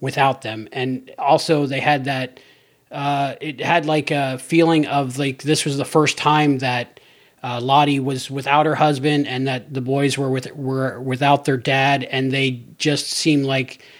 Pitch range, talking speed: 130-150 Hz, 180 wpm